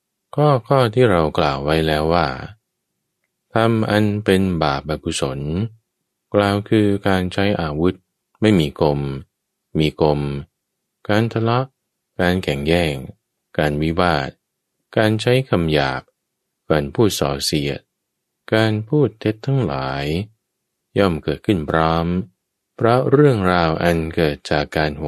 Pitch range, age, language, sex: 75-105 Hz, 20-39, English, male